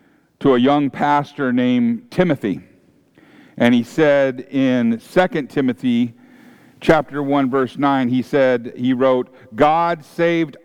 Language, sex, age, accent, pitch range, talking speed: English, male, 50-69, American, 135-180 Hz, 125 wpm